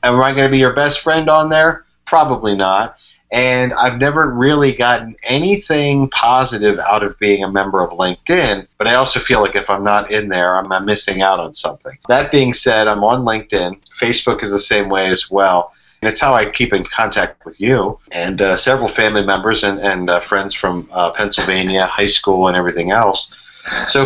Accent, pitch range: American, 95-125 Hz